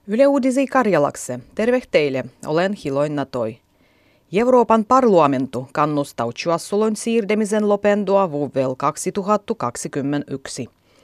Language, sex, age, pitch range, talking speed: Finnish, female, 30-49, 140-210 Hz, 85 wpm